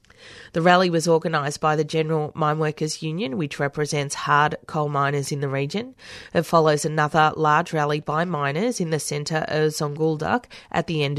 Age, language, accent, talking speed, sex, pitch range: 30-49, English, Australian, 175 wpm, female, 145-170 Hz